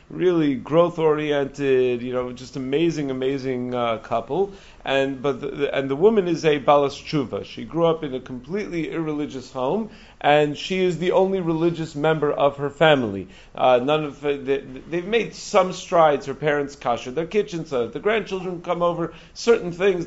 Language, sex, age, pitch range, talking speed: English, male, 40-59, 130-170 Hz, 180 wpm